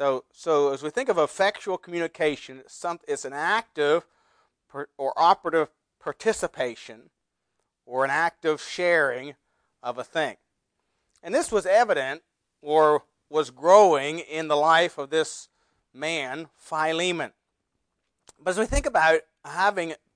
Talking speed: 120 wpm